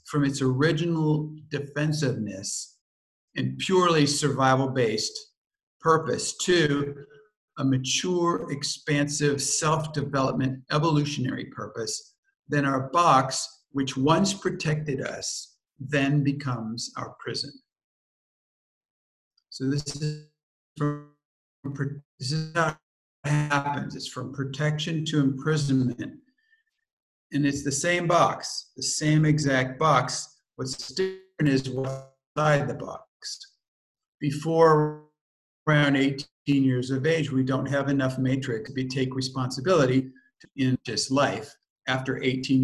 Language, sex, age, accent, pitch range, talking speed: English, male, 50-69, American, 130-155 Hz, 105 wpm